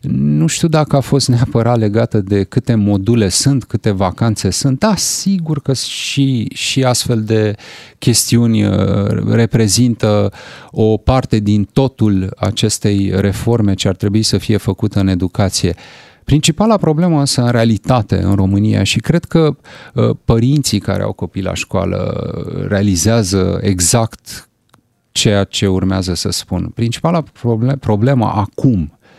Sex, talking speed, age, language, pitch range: male, 130 wpm, 30-49, Romanian, 100-130 Hz